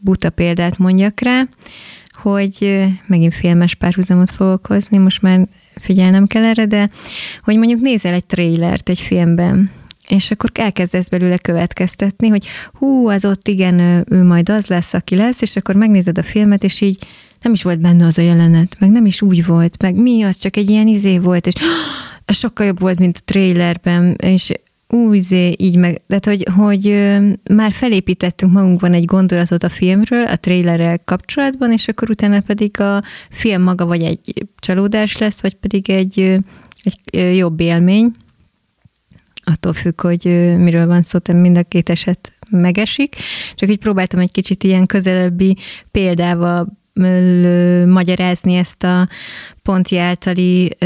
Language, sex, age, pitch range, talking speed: Hungarian, female, 20-39, 175-205 Hz, 160 wpm